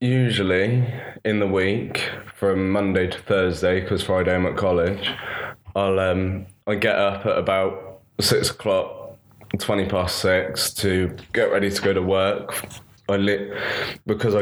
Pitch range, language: 90-100 Hz, English